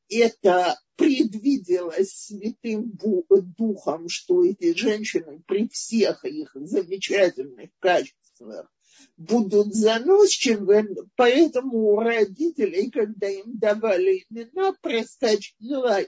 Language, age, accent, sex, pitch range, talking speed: Russian, 50-69, native, male, 195-280 Hz, 80 wpm